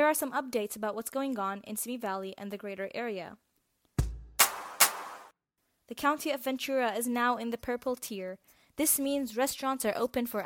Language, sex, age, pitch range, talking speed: English, female, 20-39, 215-260 Hz, 180 wpm